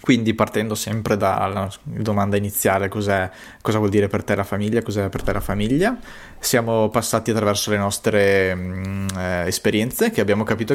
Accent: native